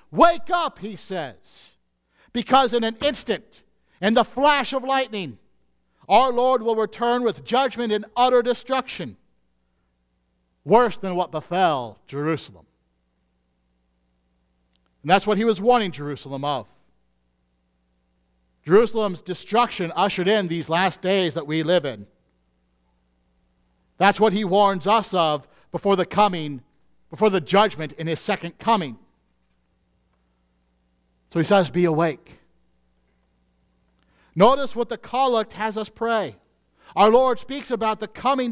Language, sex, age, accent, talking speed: English, male, 50-69, American, 125 wpm